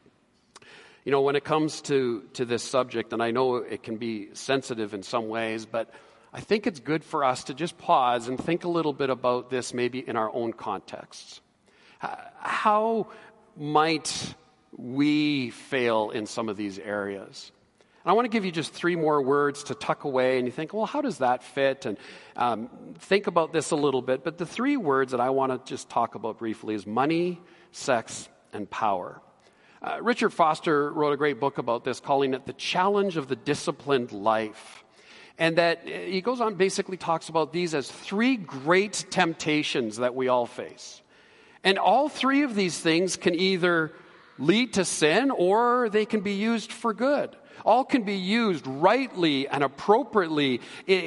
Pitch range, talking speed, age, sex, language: 130-195 Hz, 185 wpm, 40-59, male, English